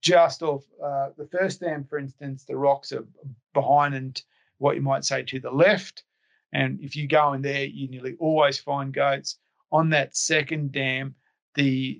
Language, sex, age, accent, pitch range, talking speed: English, male, 40-59, Australian, 135-155 Hz, 180 wpm